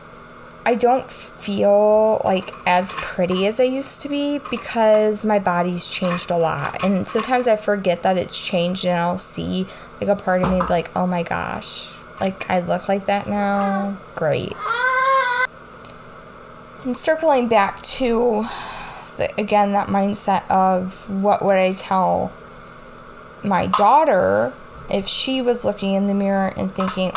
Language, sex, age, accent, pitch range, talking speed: English, female, 20-39, American, 185-255 Hz, 150 wpm